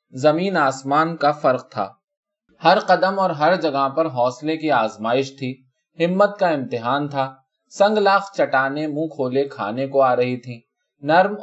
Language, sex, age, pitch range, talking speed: Urdu, male, 20-39, 125-170 Hz, 160 wpm